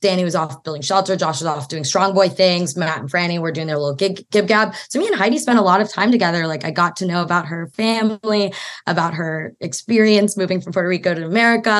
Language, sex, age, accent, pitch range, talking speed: English, female, 20-39, American, 160-200 Hz, 245 wpm